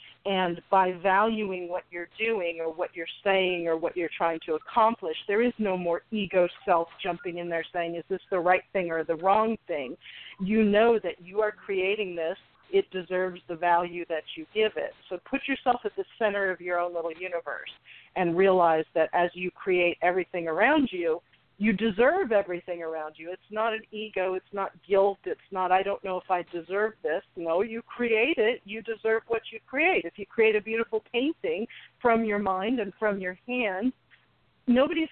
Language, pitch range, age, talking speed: English, 175-225 Hz, 50-69, 195 wpm